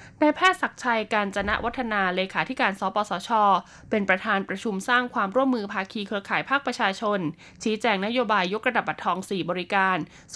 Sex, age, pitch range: female, 20-39, 190-235 Hz